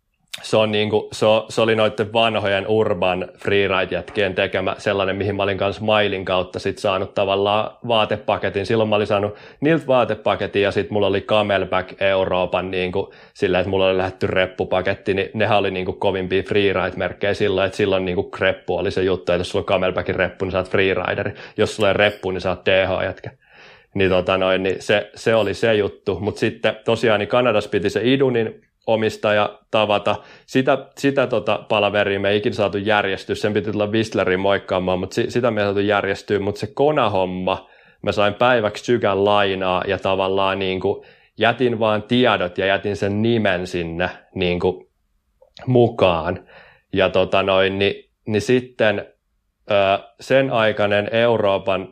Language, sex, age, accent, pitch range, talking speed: Finnish, male, 30-49, native, 95-110 Hz, 170 wpm